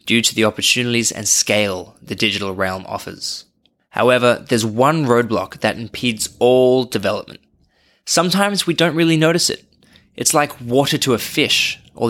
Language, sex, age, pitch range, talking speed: English, male, 20-39, 110-140 Hz, 155 wpm